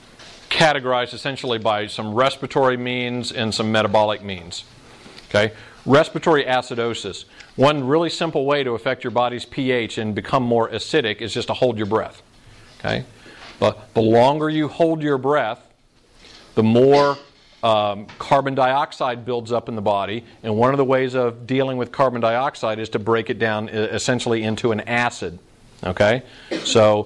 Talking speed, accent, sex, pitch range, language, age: 155 wpm, American, male, 110-130 Hz, German, 50-69